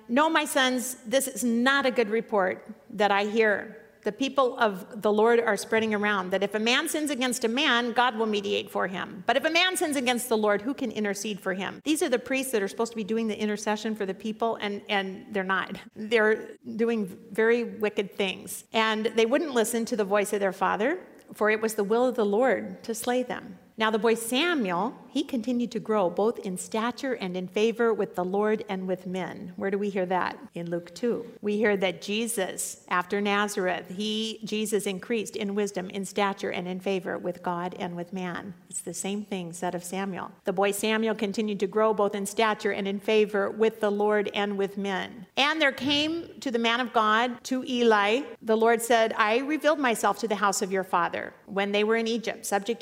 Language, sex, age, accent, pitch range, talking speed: English, female, 50-69, American, 200-235 Hz, 220 wpm